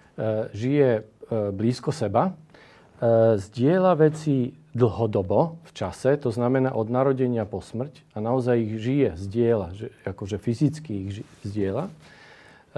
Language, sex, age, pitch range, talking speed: Slovak, male, 40-59, 105-130 Hz, 110 wpm